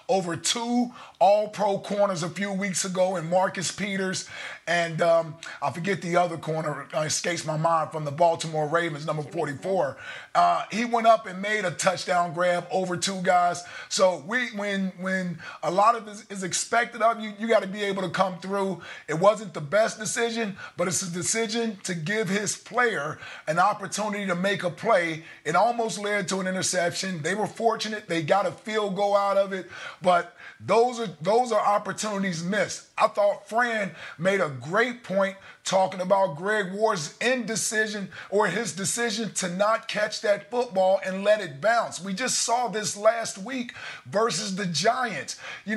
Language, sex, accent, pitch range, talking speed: English, male, American, 175-215 Hz, 180 wpm